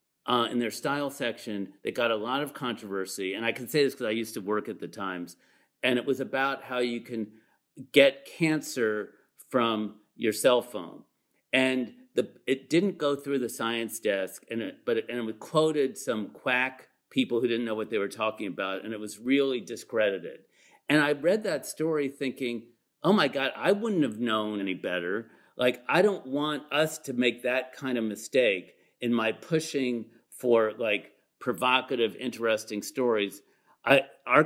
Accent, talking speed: American, 180 wpm